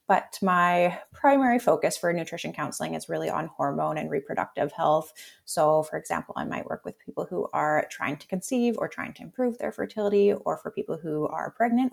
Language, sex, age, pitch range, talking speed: English, female, 20-39, 155-205 Hz, 195 wpm